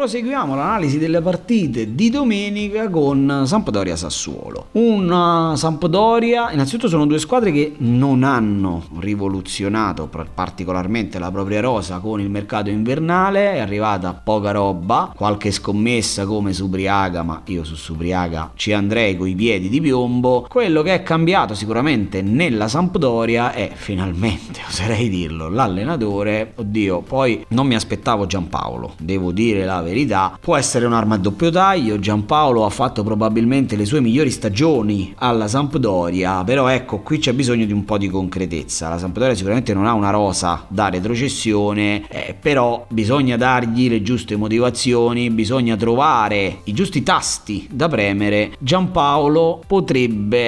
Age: 30-49